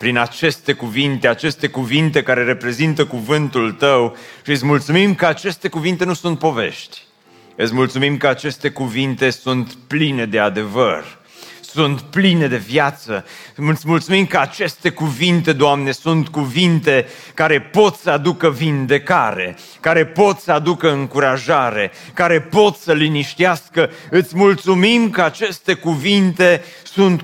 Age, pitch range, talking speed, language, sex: 30-49, 105-165 Hz, 130 wpm, Romanian, male